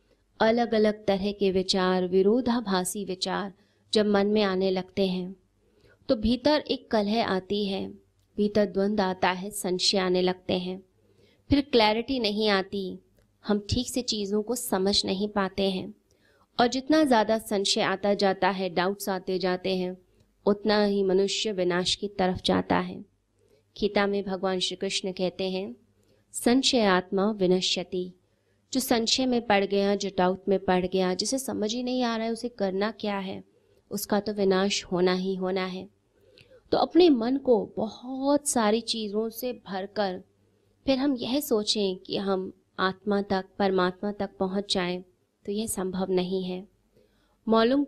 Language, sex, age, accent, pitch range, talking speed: Hindi, female, 20-39, native, 185-215 Hz, 155 wpm